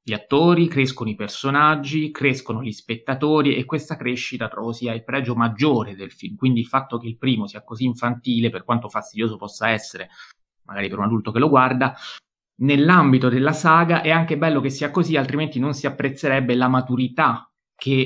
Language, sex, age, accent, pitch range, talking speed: Italian, male, 30-49, native, 110-135 Hz, 185 wpm